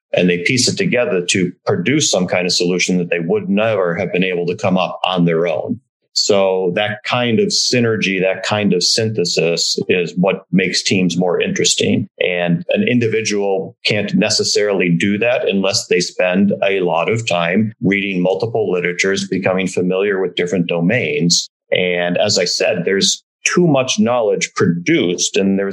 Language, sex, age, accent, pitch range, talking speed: English, male, 40-59, American, 90-115 Hz, 170 wpm